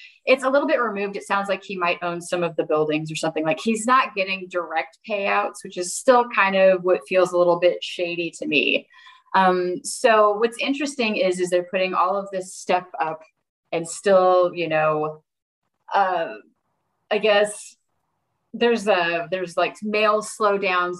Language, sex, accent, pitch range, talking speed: English, female, American, 175-235 Hz, 175 wpm